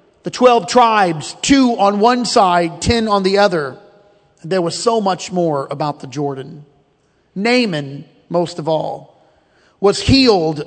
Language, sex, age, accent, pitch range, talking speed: English, male, 40-59, American, 170-225 Hz, 140 wpm